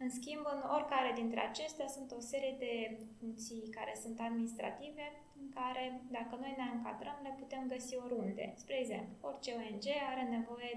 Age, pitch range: 20-39, 230-275 Hz